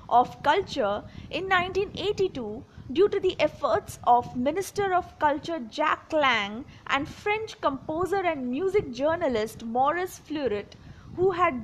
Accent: Indian